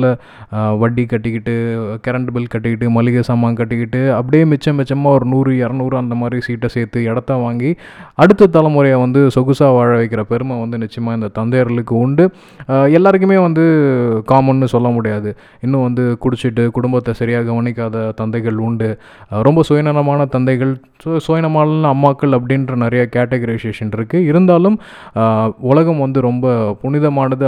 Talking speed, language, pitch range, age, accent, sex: 80 wpm, Tamil, 115-140 Hz, 20-39, native, male